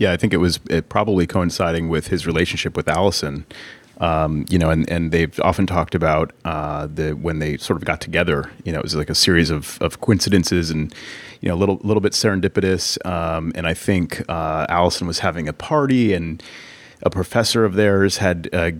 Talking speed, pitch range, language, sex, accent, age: 210 wpm, 80-95 Hz, English, male, American, 30-49